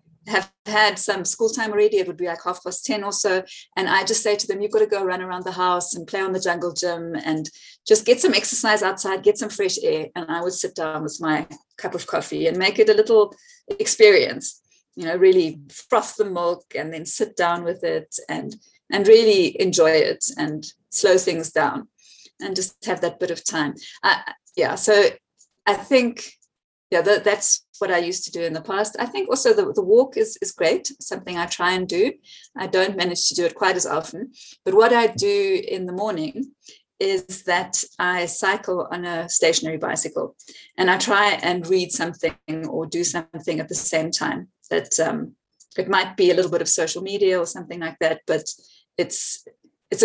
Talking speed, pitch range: 205 wpm, 170-250 Hz